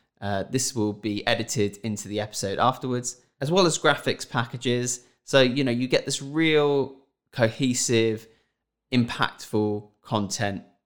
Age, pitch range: 20-39, 105-135 Hz